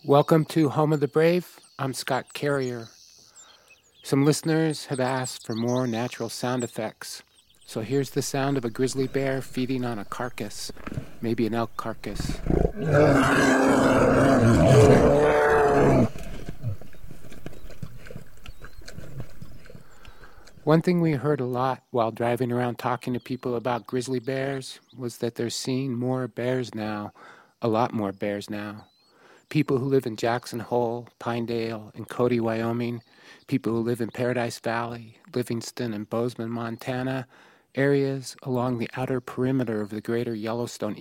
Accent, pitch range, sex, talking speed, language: American, 115-135 Hz, male, 130 wpm, English